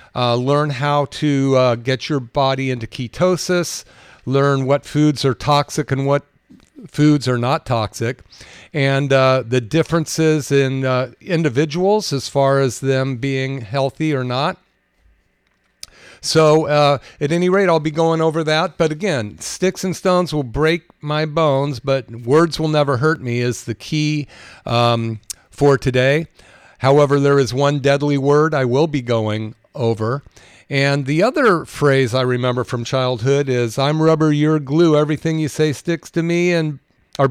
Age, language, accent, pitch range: 50-69, English, American, 130-160 Hz